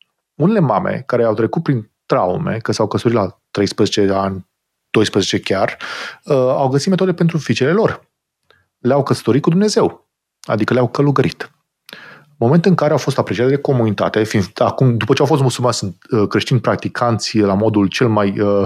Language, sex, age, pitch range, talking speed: Romanian, male, 30-49, 110-165 Hz, 165 wpm